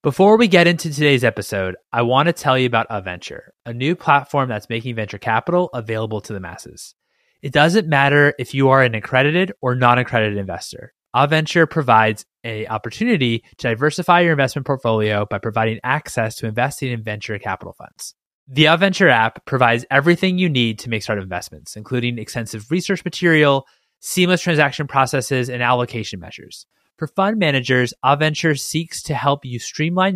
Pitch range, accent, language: 115-155 Hz, American, English